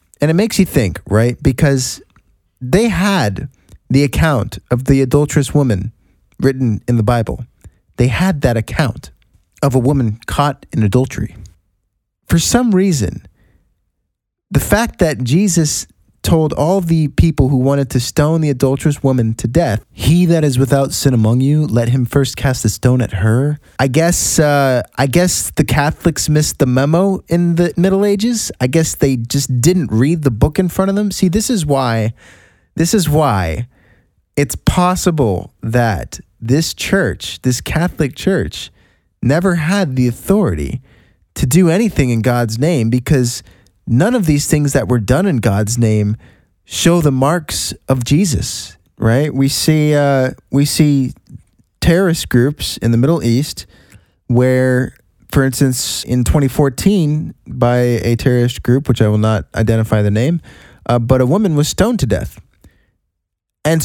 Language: English